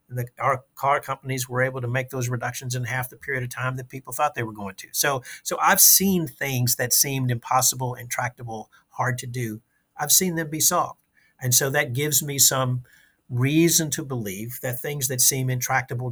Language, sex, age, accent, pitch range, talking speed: English, male, 50-69, American, 120-140 Hz, 200 wpm